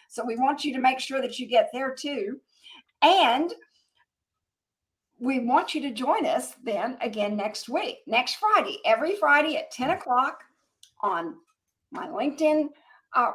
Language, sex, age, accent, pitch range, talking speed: English, female, 50-69, American, 240-320 Hz, 155 wpm